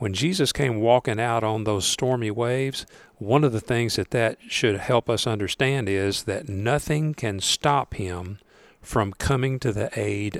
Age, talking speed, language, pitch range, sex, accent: 50-69, 175 wpm, English, 105-135 Hz, male, American